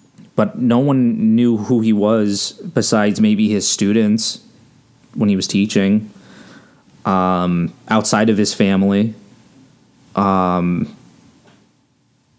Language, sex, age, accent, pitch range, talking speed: English, male, 20-39, American, 105-130 Hz, 100 wpm